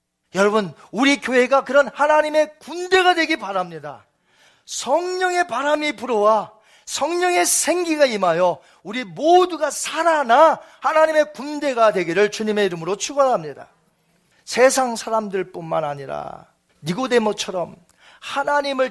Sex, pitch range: male, 195-305 Hz